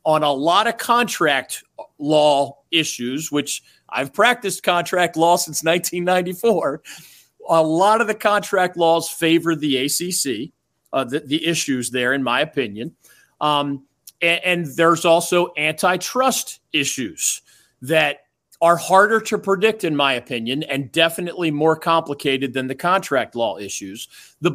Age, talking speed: 40-59, 135 wpm